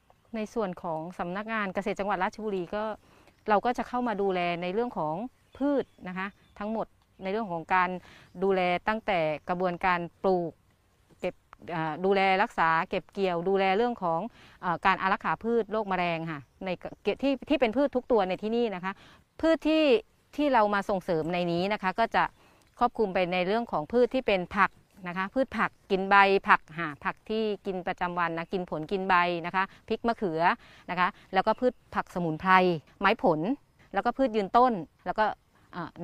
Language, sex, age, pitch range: Thai, female, 30-49, 175-225 Hz